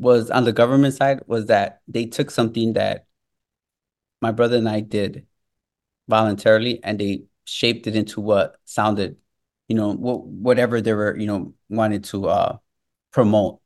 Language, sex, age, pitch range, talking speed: English, male, 30-49, 105-115 Hz, 160 wpm